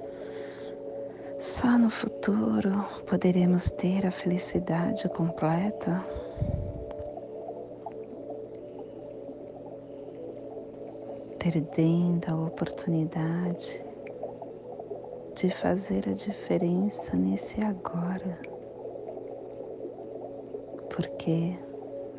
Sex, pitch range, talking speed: female, 115-180 Hz, 50 wpm